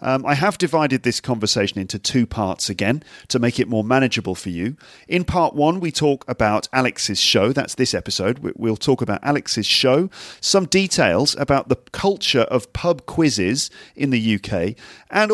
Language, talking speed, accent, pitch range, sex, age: English, 175 wpm, British, 105-150 Hz, male, 40-59